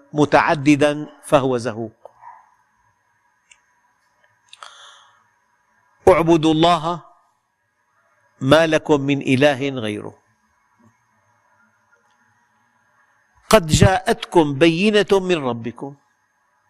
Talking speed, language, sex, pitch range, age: 55 wpm, Arabic, male, 140-195 Hz, 50-69